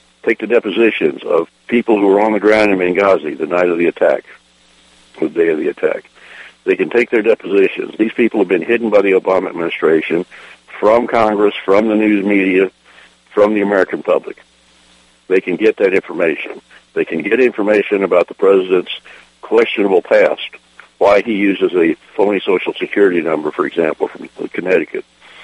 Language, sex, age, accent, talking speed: English, male, 60-79, American, 170 wpm